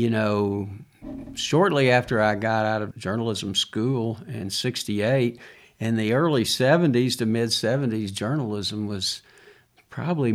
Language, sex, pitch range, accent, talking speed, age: English, male, 105-135 Hz, American, 120 wpm, 60-79